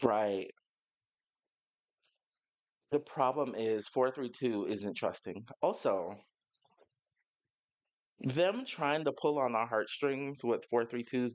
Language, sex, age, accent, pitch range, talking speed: English, male, 30-49, American, 120-170 Hz, 90 wpm